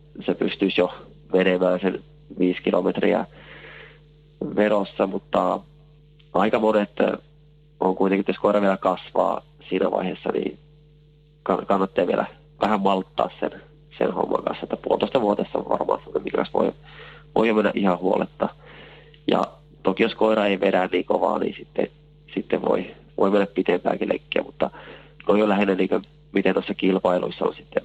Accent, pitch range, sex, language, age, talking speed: native, 95-150 Hz, male, Finnish, 30-49, 140 wpm